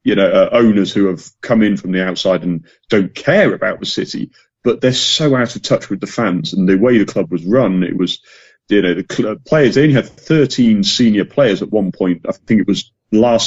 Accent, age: British, 40-59